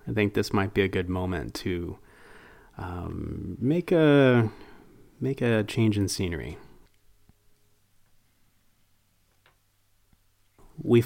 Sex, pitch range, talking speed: male, 90-105 Hz, 100 wpm